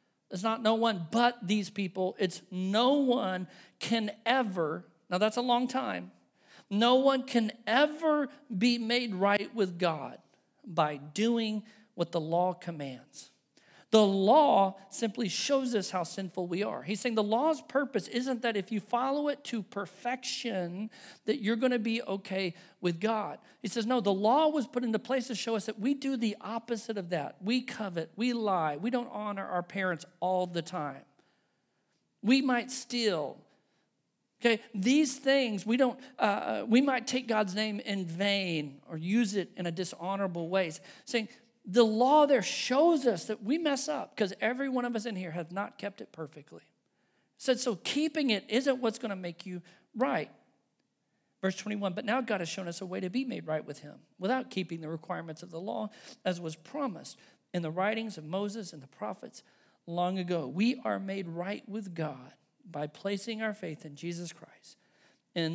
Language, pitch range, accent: English, 180-240 Hz, American